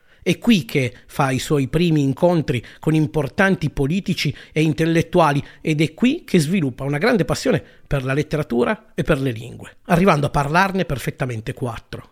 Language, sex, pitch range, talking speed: Italian, male, 150-200 Hz, 165 wpm